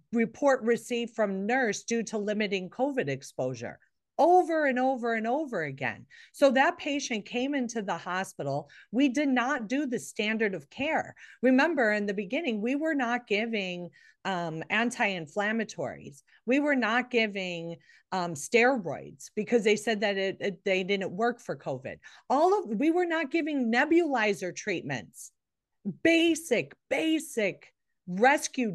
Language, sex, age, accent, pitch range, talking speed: English, female, 40-59, American, 180-260 Hz, 140 wpm